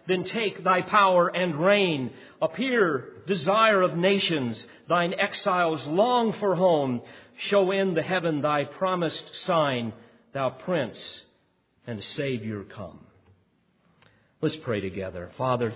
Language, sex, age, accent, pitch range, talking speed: English, male, 50-69, American, 120-160 Hz, 120 wpm